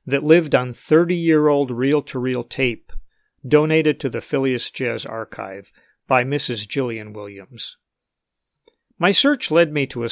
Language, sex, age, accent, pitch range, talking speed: English, male, 50-69, American, 125-160 Hz, 130 wpm